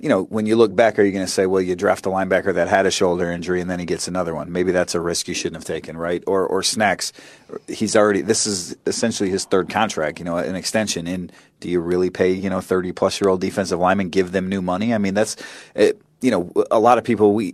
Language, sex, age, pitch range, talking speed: English, male, 30-49, 90-105 Hz, 265 wpm